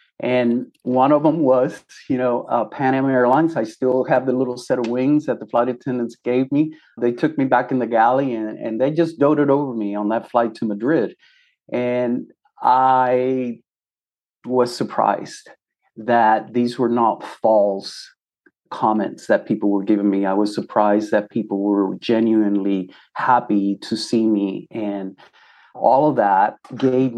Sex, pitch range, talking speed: male, 105-130 Hz, 165 wpm